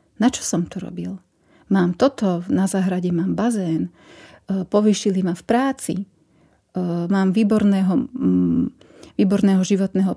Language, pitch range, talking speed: Slovak, 175-205 Hz, 110 wpm